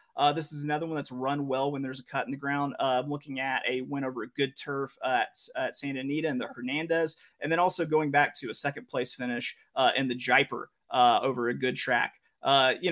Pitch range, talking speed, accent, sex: 135-170 Hz, 250 wpm, American, male